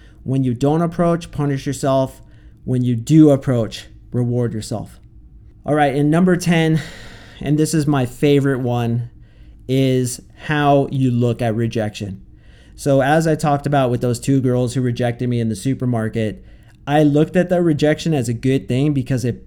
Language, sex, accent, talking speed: English, male, American, 170 wpm